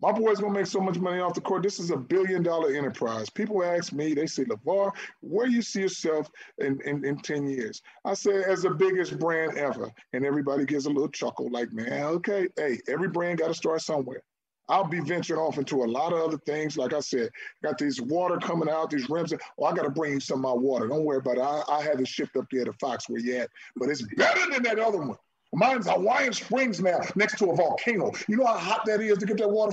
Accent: American